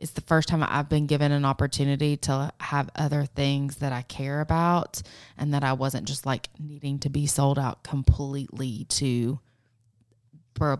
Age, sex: 20-39, female